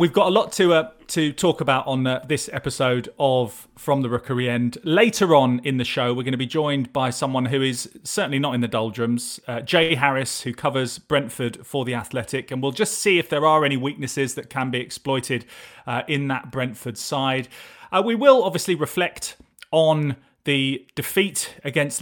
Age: 30-49